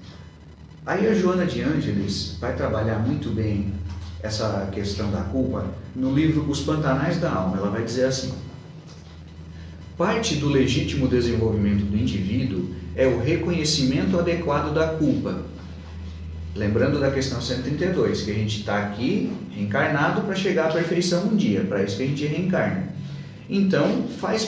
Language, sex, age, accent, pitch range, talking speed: Portuguese, male, 40-59, Brazilian, 105-155 Hz, 145 wpm